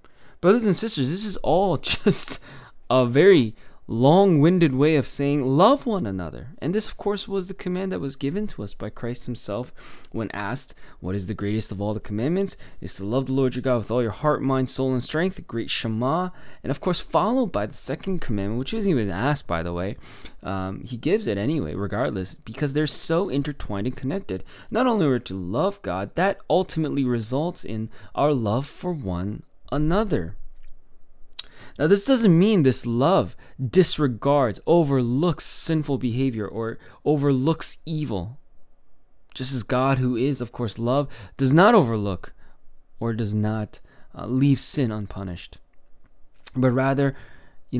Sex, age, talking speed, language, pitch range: male, 20-39, 175 wpm, English, 110-160 Hz